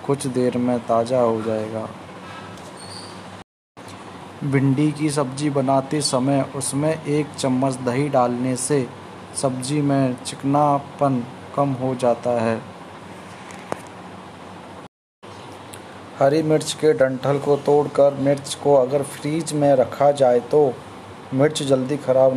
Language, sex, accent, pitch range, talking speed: Hindi, male, native, 125-140 Hz, 110 wpm